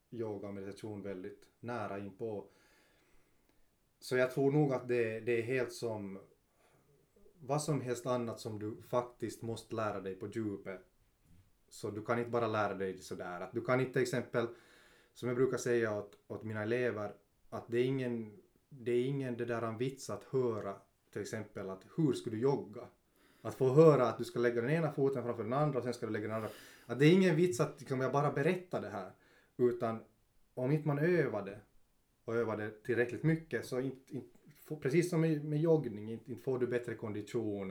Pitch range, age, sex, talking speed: 105-135 Hz, 30-49, male, 200 wpm